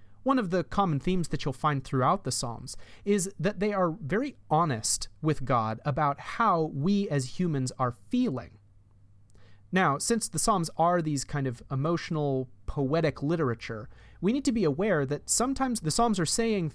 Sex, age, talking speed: male, 30-49, 170 wpm